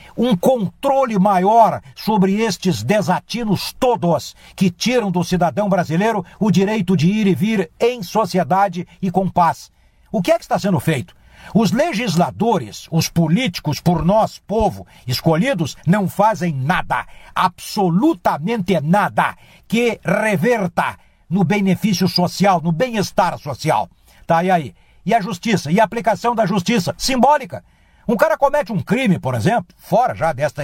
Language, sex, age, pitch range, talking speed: Portuguese, male, 60-79, 180-250 Hz, 145 wpm